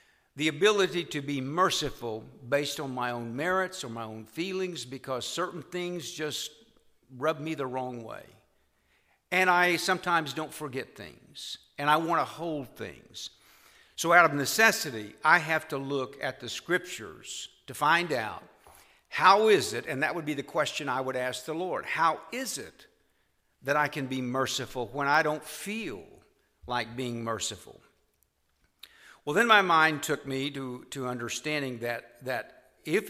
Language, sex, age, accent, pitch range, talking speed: English, male, 60-79, American, 125-175 Hz, 165 wpm